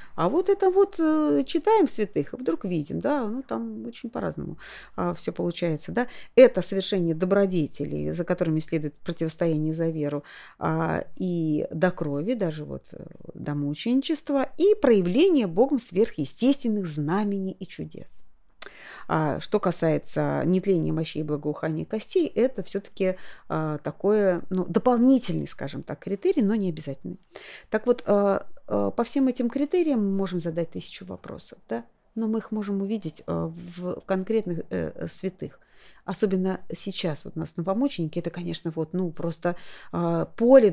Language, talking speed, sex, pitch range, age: Russian, 135 wpm, female, 165-230 Hz, 30-49